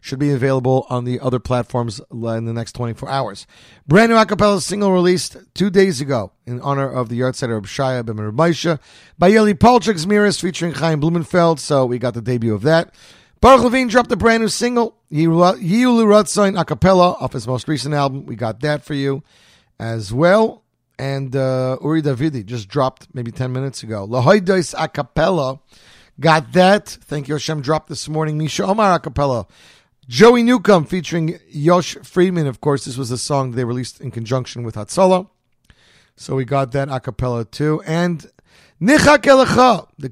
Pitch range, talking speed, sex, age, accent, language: 125-180 Hz, 180 wpm, male, 40-59, American, English